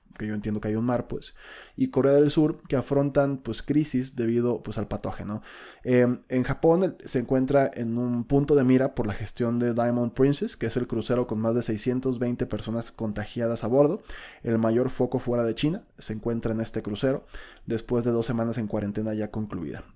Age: 20-39